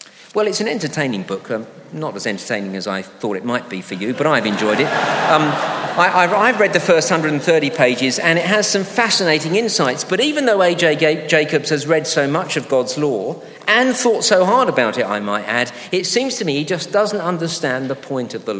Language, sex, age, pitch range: English, male, 50-69, 125-185 Hz